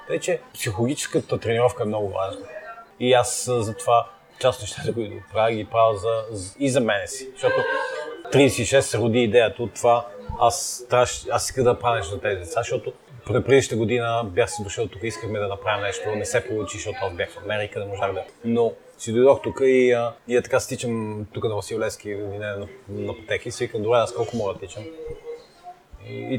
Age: 30-49